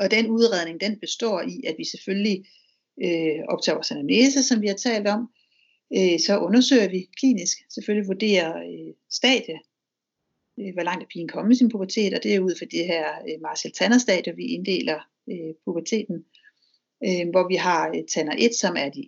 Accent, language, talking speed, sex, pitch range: native, Danish, 185 wpm, female, 180-230 Hz